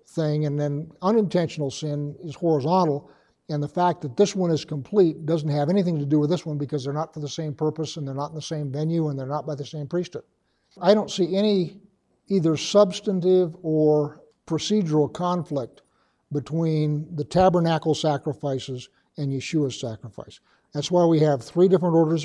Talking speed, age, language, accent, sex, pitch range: 180 wpm, 60-79, English, American, male, 145-175 Hz